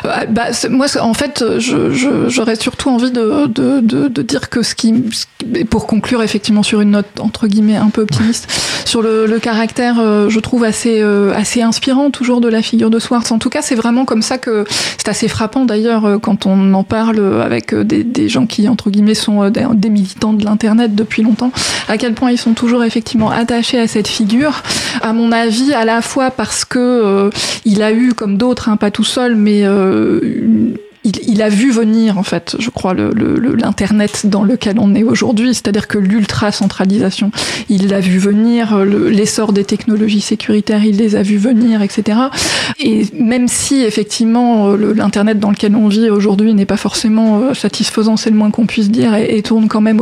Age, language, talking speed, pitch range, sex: 20-39, French, 205 wpm, 210-240 Hz, female